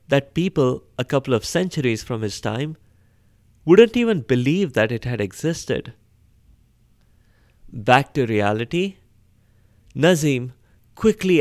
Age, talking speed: 30-49, 110 wpm